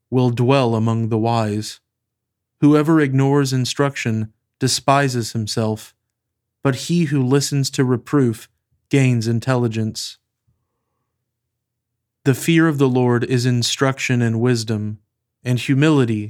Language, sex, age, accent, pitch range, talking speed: English, male, 30-49, American, 110-130 Hz, 105 wpm